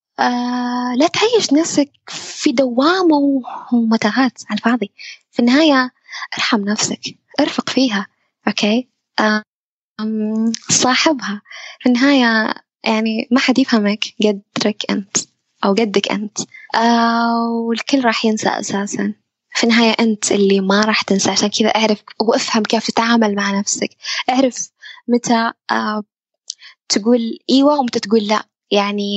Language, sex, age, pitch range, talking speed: Arabic, female, 10-29, 215-255 Hz, 120 wpm